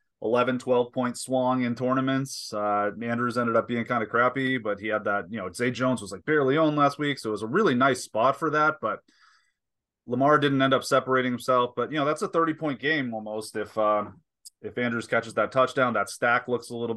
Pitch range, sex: 110-135 Hz, male